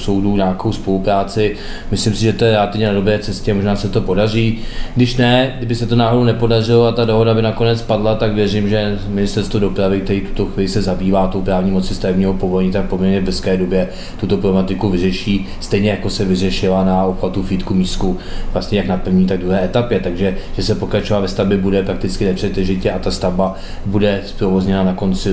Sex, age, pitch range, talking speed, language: male, 20-39, 95-110 Hz, 195 wpm, Czech